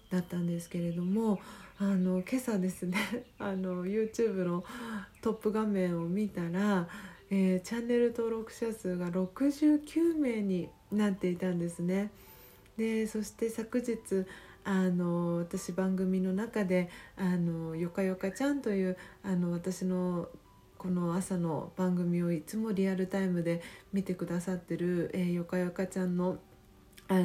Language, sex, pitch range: Japanese, female, 175-215 Hz